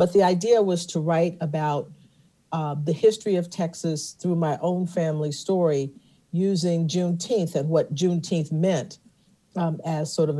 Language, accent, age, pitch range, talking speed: English, American, 50-69, 145-175 Hz, 155 wpm